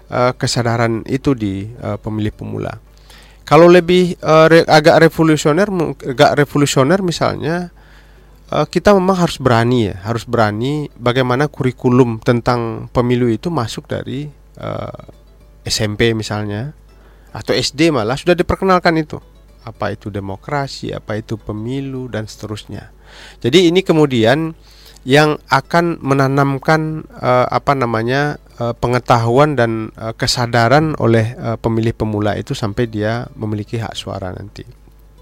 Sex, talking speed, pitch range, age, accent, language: male, 110 wpm, 110-145 Hz, 30-49, native, Indonesian